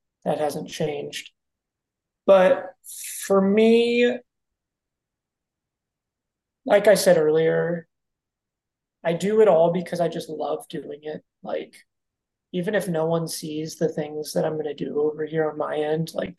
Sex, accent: male, American